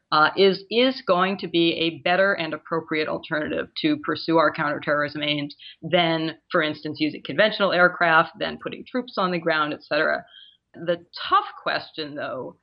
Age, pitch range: 40-59, 160-215 Hz